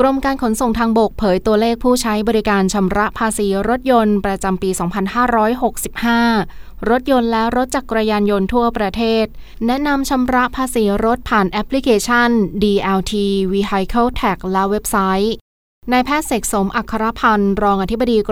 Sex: female